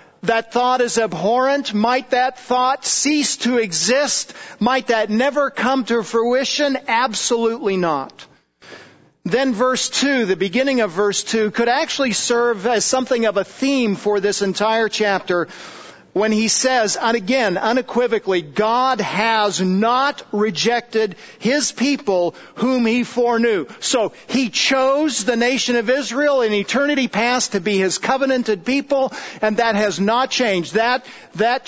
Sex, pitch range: male, 210-255 Hz